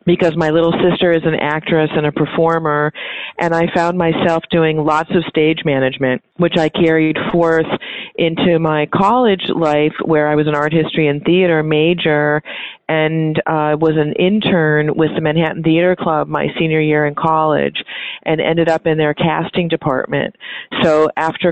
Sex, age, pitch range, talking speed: female, 40-59, 150-165 Hz, 165 wpm